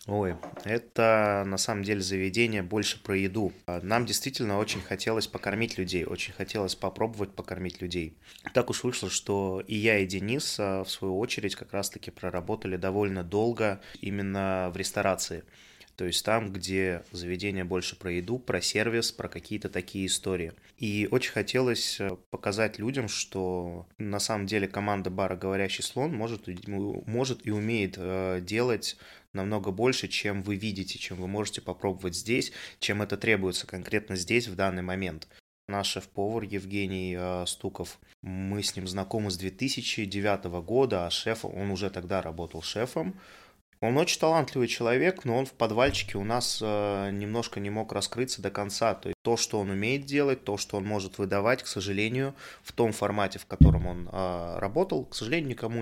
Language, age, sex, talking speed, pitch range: Russian, 20-39, male, 155 wpm, 95-115 Hz